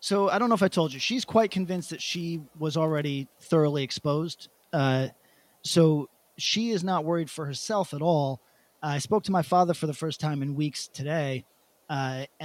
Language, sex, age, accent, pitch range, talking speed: English, male, 30-49, American, 140-180 Hz, 200 wpm